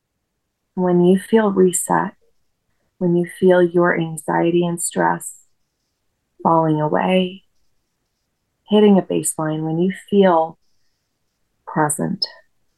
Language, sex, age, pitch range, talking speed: English, female, 30-49, 165-185 Hz, 95 wpm